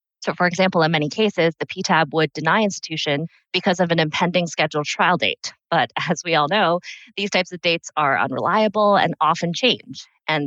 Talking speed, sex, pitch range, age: 190 wpm, female, 145-180 Hz, 20-39